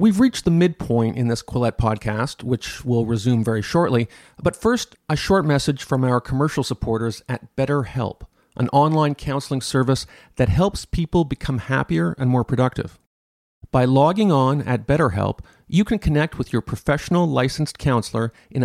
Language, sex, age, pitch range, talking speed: English, male, 50-69, 115-145 Hz, 165 wpm